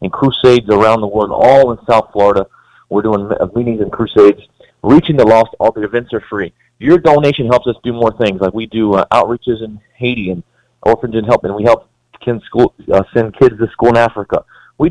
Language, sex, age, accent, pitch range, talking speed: English, male, 40-59, American, 105-125 Hz, 215 wpm